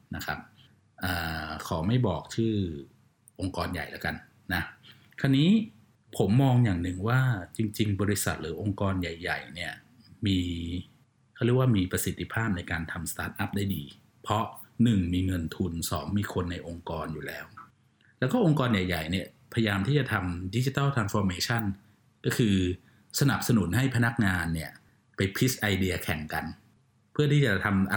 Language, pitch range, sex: Thai, 95-130 Hz, male